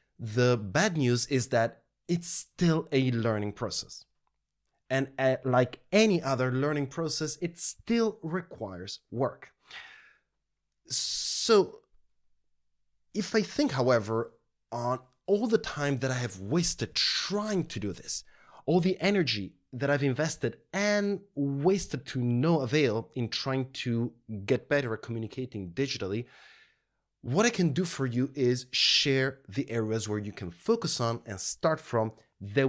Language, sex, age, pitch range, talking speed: English, male, 30-49, 115-155 Hz, 140 wpm